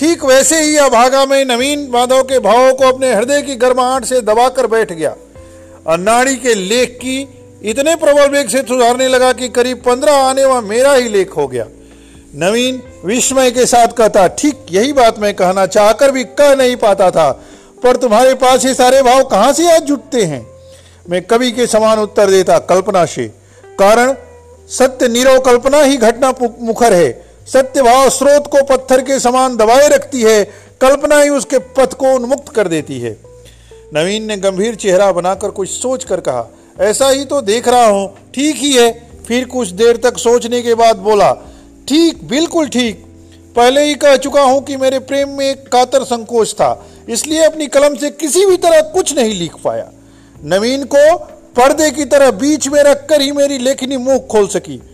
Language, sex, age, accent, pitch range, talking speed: Hindi, male, 50-69, native, 215-275 Hz, 140 wpm